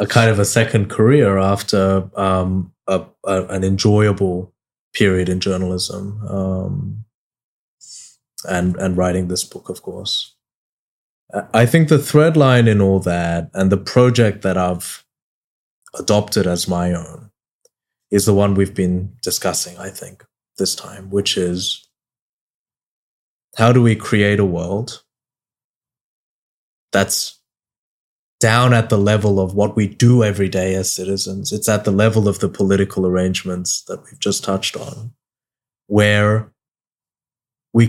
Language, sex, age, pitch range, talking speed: Indonesian, male, 20-39, 95-115 Hz, 135 wpm